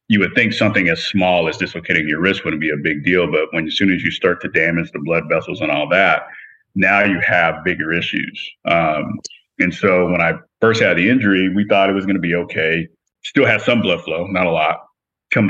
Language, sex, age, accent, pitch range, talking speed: English, male, 30-49, American, 85-100 Hz, 235 wpm